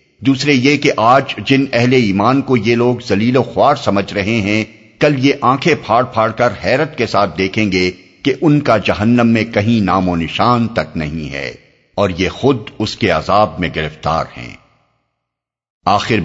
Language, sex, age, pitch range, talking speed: Urdu, male, 50-69, 85-115 Hz, 180 wpm